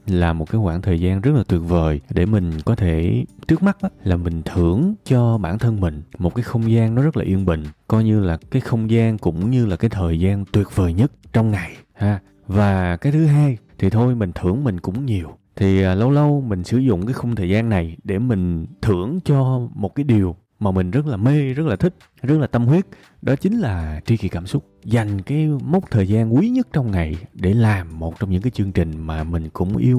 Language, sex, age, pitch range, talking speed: Vietnamese, male, 20-39, 90-130 Hz, 240 wpm